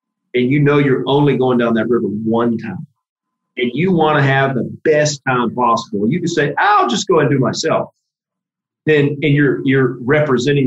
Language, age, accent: English, 40-59, American